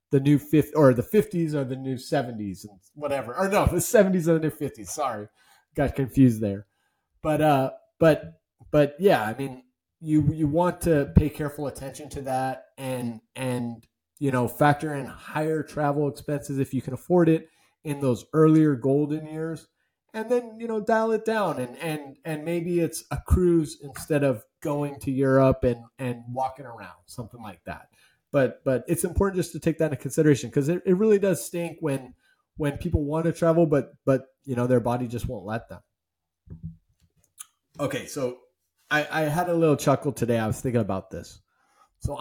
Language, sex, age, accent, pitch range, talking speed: English, male, 30-49, American, 120-155 Hz, 190 wpm